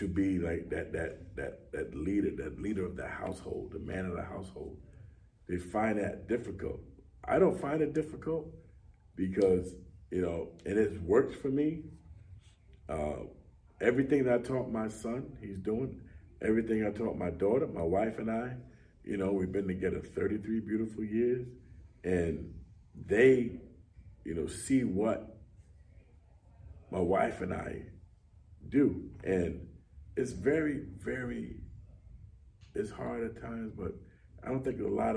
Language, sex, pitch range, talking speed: English, male, 90-125 Hz, 150 wpm